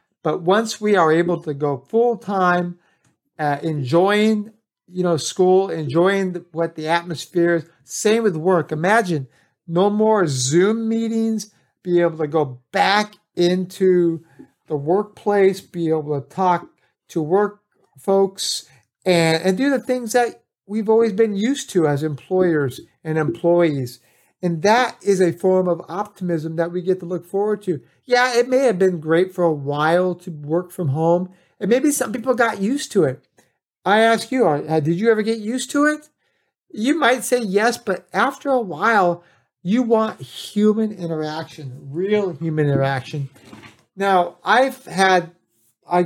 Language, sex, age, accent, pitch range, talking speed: English, male, 50-69, American, 160-210 Hz, 155 wpm